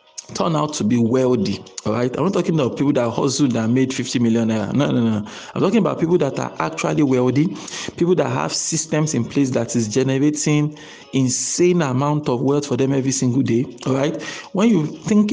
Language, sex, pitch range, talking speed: English, male, 125-155 Hz, 205 wpm